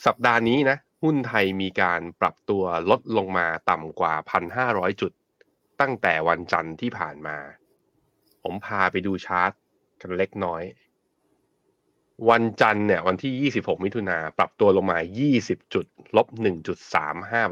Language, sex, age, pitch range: Thai, male, 20-39, 90-120 Hz